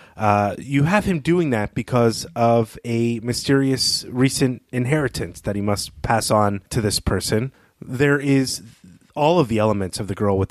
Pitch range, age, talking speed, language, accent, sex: 100-125 Hz, 30-49, 170 wpm, English, American, male